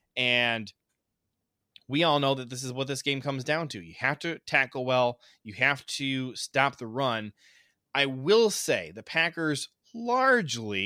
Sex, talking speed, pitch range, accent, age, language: male, 165 wpm, 115-140 Hz, American, 20-39, English